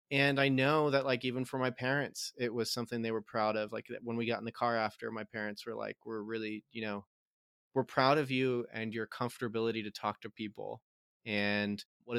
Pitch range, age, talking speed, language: 105-130 Hz, 20-39, 220 wpm, English